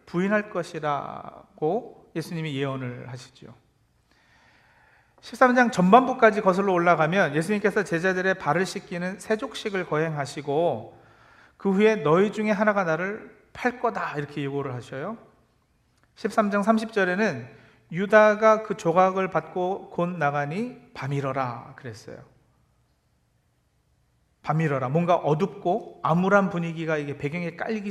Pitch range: 150-210 Hz